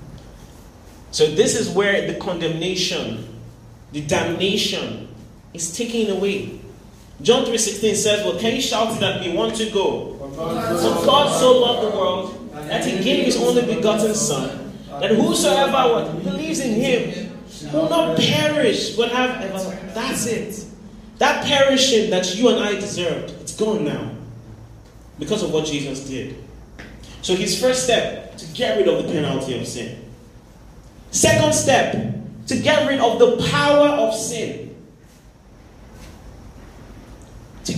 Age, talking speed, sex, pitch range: 30-49, 135 wpm, male, 165-235 Hz